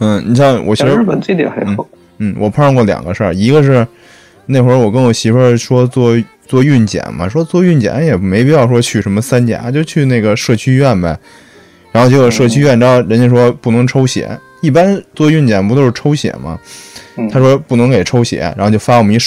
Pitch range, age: 100-130 Hz, 20-39